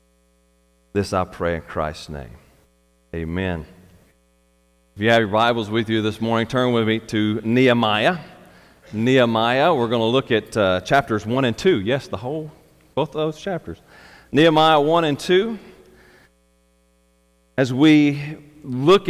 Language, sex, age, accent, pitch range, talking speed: English, male, 40-59, American, 90-140 Hz, 145 wpm